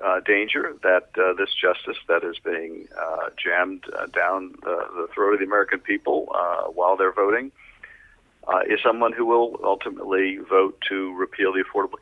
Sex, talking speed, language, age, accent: male, 175 wpm, English, 50-69, American